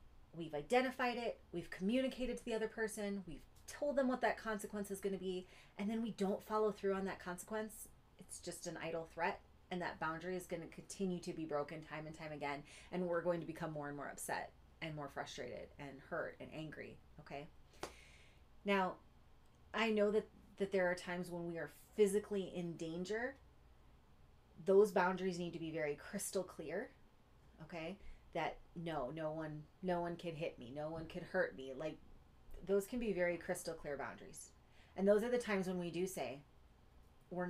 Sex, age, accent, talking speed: female, 30-49, American, 190 wpm